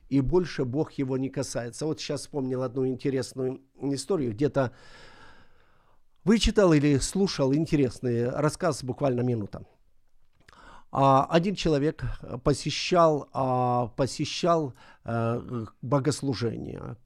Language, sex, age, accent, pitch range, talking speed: Ukrainian, male, 50-69, native, 125-155 Hz, 90 wpm